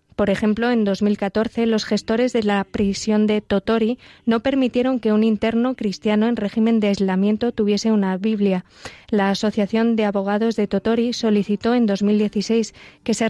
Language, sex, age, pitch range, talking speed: Spanish, female, 20-39, 200-230 Hz, 160 wpm